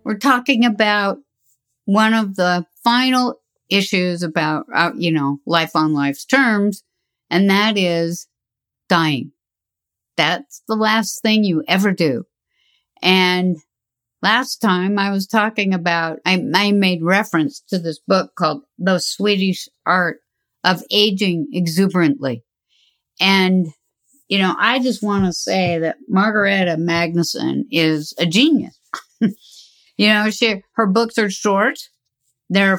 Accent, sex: American, female